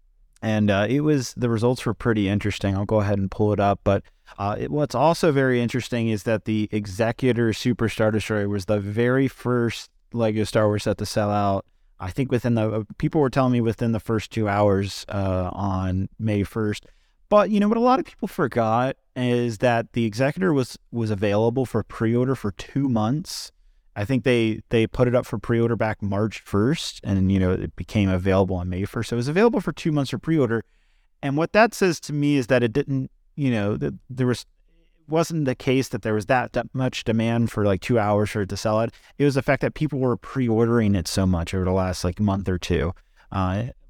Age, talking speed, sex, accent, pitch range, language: 30-49, 225 wpm, male, American, 100-130 Hz, English